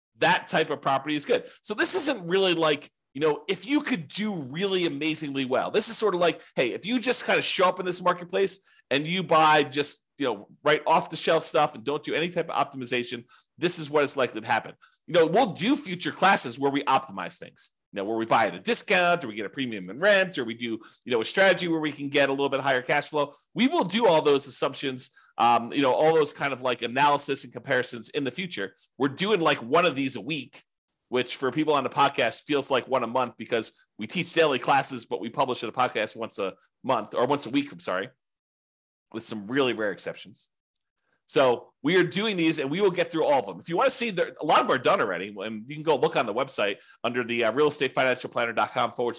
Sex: male